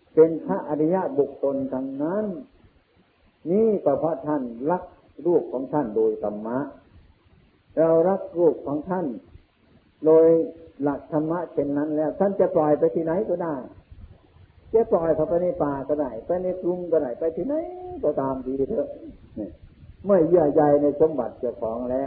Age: 60-79